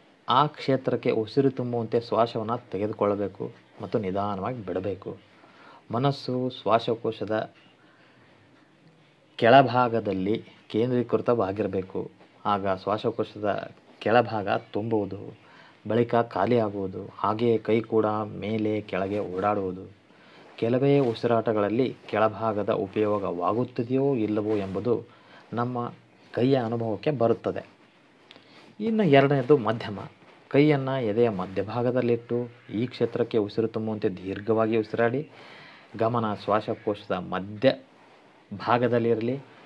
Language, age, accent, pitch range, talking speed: Kannada, 30-49, native, 105-125 Hz, 75 wpm